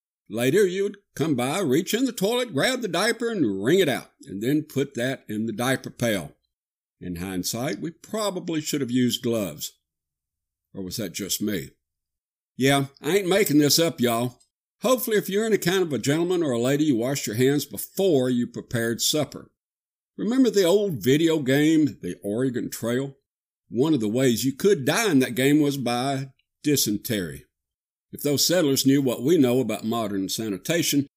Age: 60-79